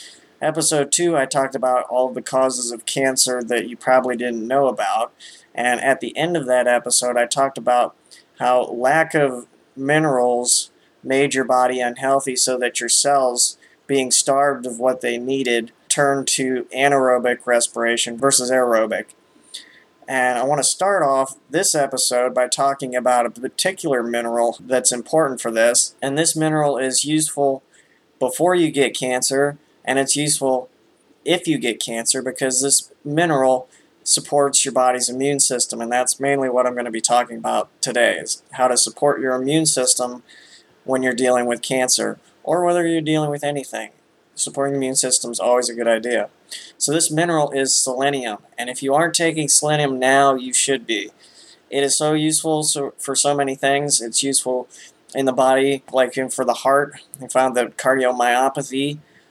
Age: 20-39